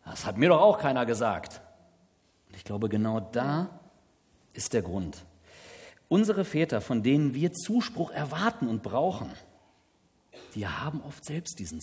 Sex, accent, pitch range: male, German, 110-170 Hz